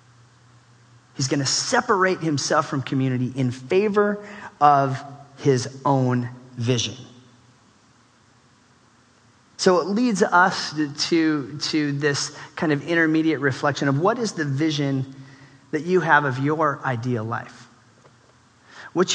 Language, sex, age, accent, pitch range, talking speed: English, male, 30-49, American, 125-155 Hz, 115 wpm